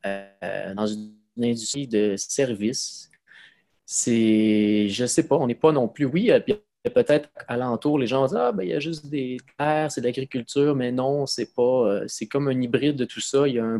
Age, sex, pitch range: 20-39, male, 105-130 Hz